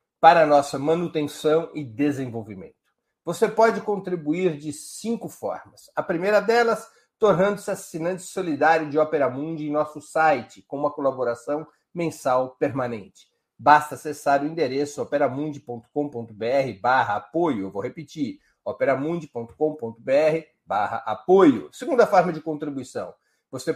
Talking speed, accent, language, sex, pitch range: 115 wpm, Brazilian, Portuguese, male, 145-185 Hz